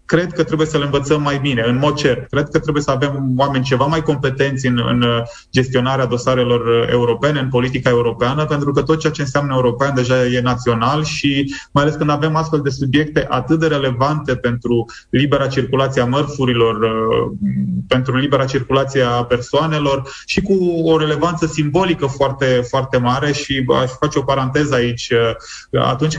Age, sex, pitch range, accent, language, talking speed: 20-39, male, 125-150 Hz, native, Romanian, 170 wpm